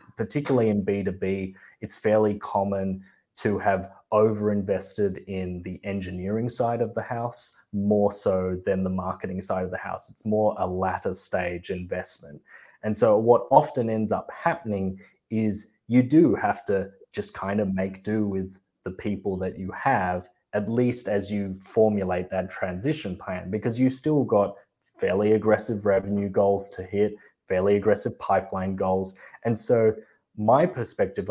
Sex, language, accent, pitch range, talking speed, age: male, English, Australian, 95-110 Hz, 155 wpm, 20-39